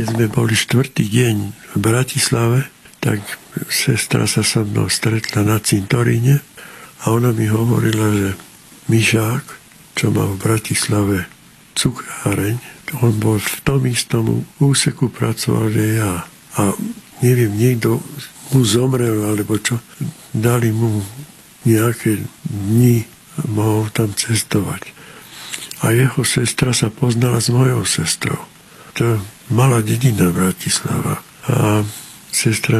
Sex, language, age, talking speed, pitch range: male, Slovak, 60-79, 115 wpm, 110-135 Hz